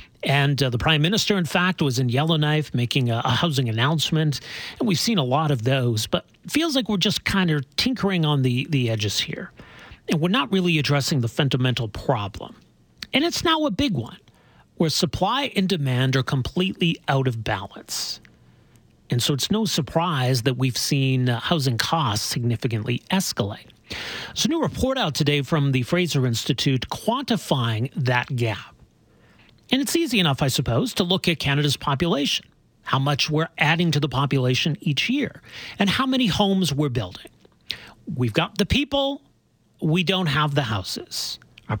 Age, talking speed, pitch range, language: 40-59, 175 wpm, 125-175 Hz, English